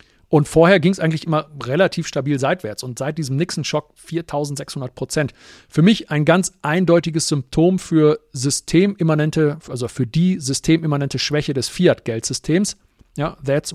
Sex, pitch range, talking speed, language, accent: male, 135-175 Hz, 140 wpm, German, German